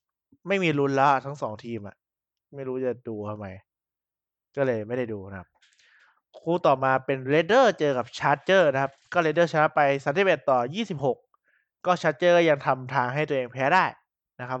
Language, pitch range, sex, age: Thai, 125-155 Hz, male, 20-39